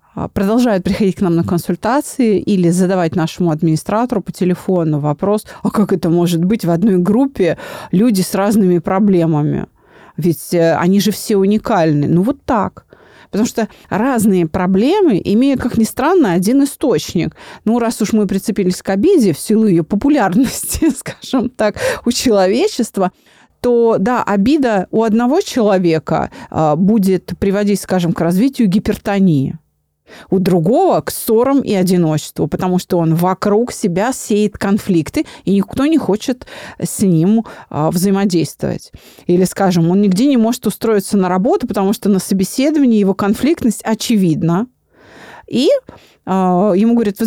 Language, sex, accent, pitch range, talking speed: Russian, female, native, 180-230 Hz, 140 wpm